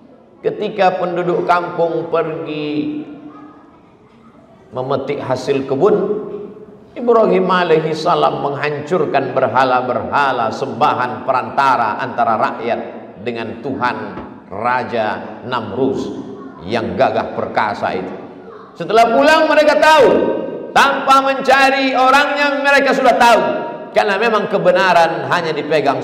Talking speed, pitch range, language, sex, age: 90 wpm, 175-295 Hz, Indonesian, male, 50-69